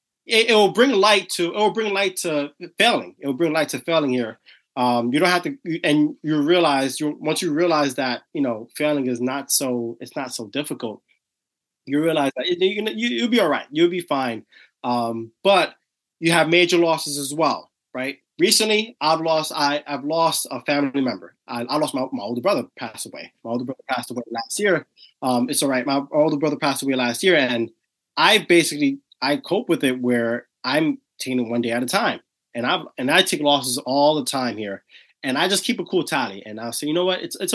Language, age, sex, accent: English, 20-39, male, American